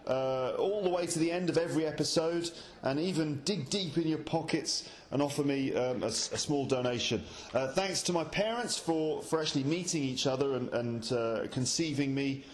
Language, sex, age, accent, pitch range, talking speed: English, male, 30-49, British, 115-155 Hz, 190 wpm